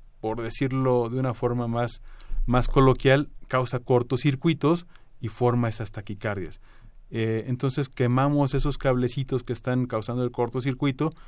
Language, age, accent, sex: Spanish, 30-49, Mexican, male